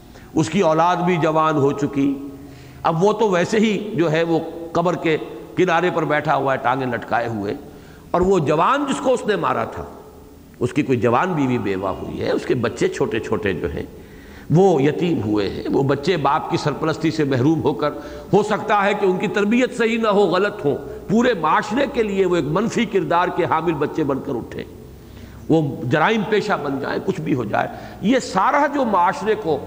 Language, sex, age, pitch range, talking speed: English, male, 50-69, 125-205 Hz, 120 wpm